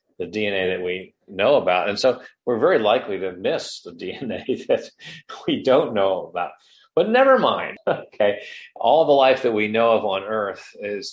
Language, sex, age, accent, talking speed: English, male, 40-59, American, 180 wpm